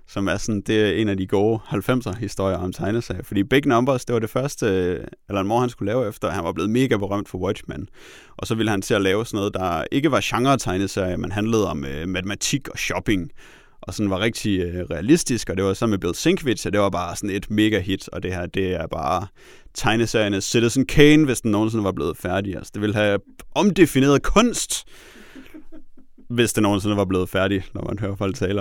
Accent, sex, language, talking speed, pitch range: native, male, Danish, 225 wpm, 95-120 Hz